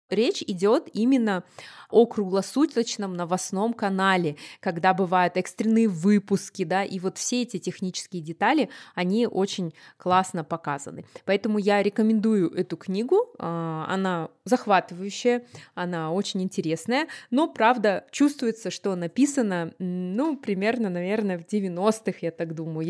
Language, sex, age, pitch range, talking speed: Russian, female, 20-39, 190-245 Hz, 120 wpm